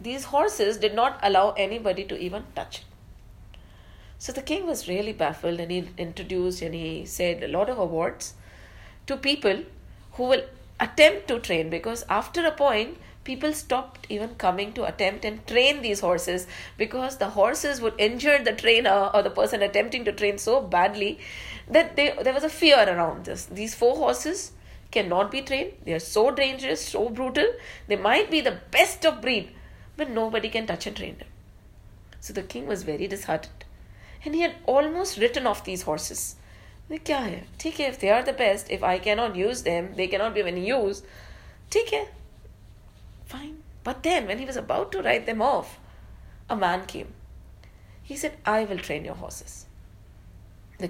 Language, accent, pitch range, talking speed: English, Indian, 185-275 Hz, 180 wpm